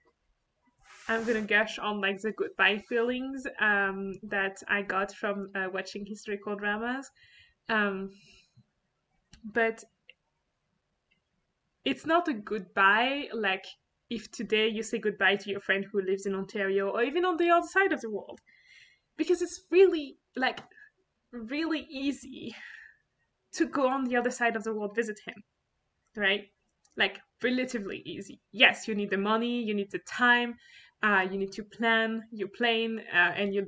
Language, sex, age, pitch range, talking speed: English, female, 20-39, 200-270 Hz, 150 wpm